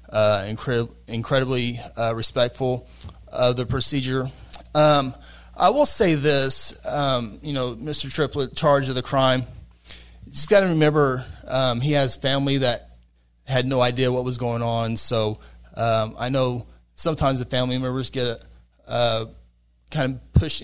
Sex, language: male, English